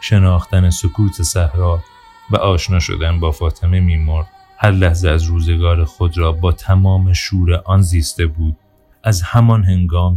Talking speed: 140 wpm